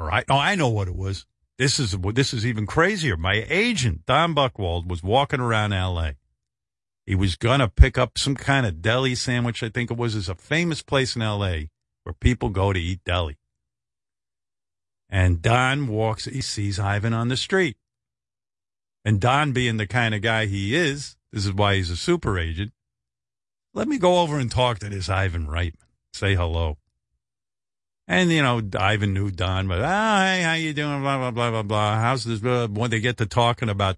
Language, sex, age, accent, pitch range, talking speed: English, male, 50-69, American, 95-135 Hz, 195 wpm